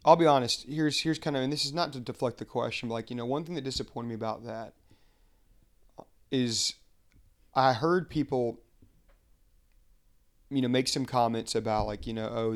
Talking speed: 190 wpm